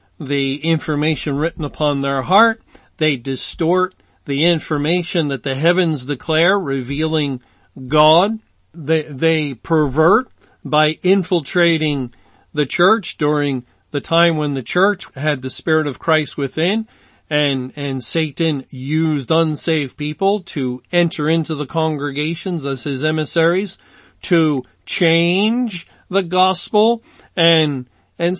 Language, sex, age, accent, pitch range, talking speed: English, male, 50-69, American, 145-175 Hz, 115 wpm